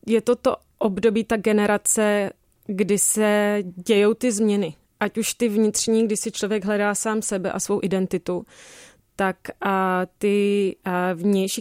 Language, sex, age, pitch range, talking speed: Czech, female, 30-49, 190-220 Hz, 145 wpm